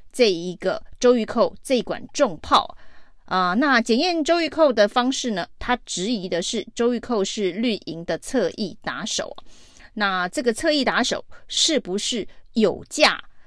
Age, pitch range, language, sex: 30-49, 190-250 Hz, Chinese, female